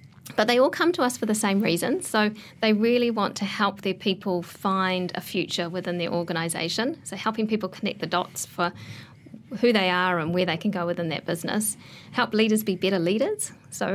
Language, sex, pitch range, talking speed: English, female, 180-215 Hz, 205 wpm